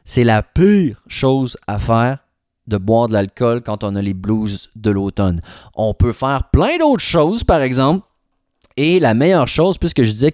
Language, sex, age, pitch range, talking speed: French, male, 30-49, 105-135 Hz, 185 wpm